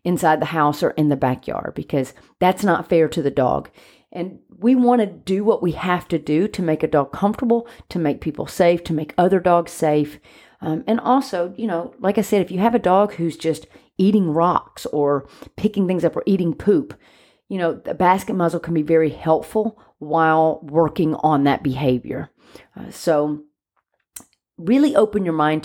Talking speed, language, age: 190 wpm, English, 40-59